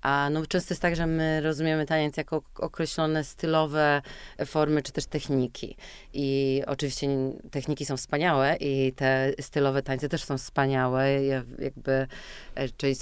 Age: 20-39